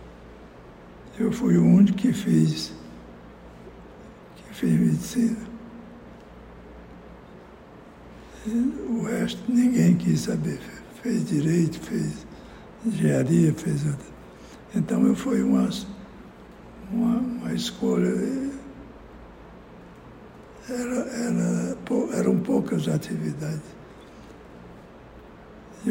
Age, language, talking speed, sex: 60-79, Portuguese, 75 wpm, male